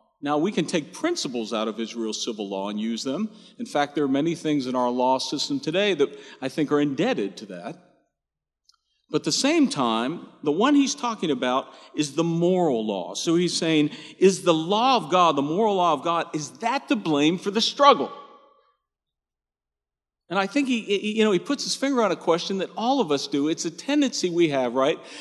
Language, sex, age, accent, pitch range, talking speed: English, male, 50-69, American, 155-235 Hz, 205 wpm